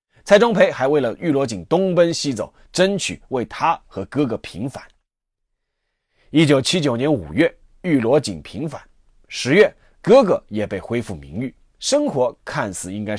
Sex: male